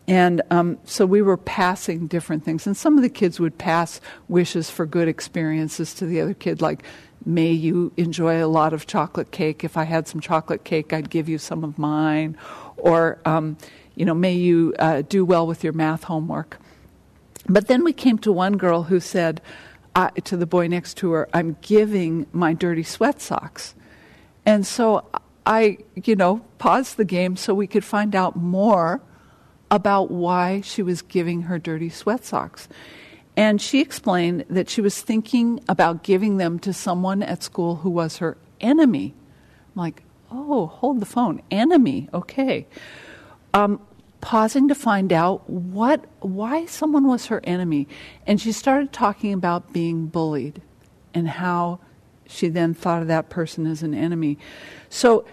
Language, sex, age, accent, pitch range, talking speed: English, female, 50-69, American, 165-205 Hz, 170 wpm